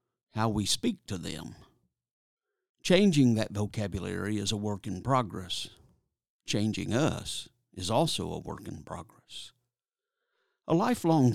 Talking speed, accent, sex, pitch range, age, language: 120 wpm, American, male, 105-135 Hz, 60-79, English